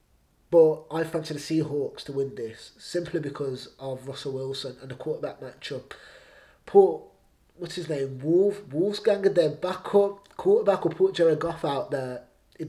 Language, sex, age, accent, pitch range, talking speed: English, male, 20-39, British, 145-175 Hz, 160 wpm